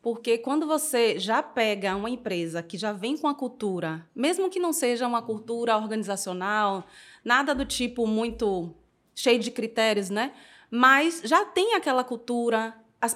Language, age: Portuguese, 20-39